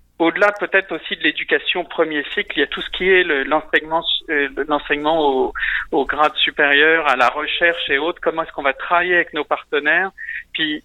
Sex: male